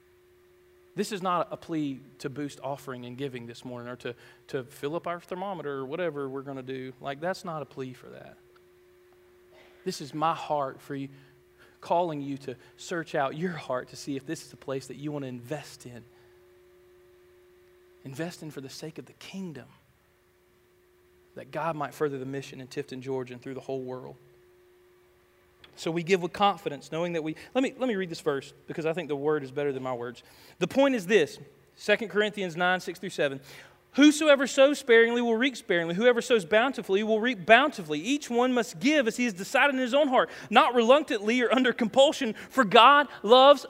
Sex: male